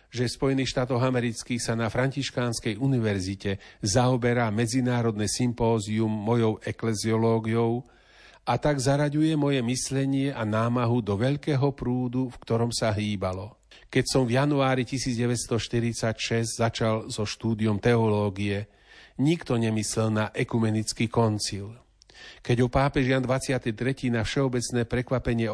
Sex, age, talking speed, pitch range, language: male, 40-59, 115 wpm, 110-130 Hz, Slovak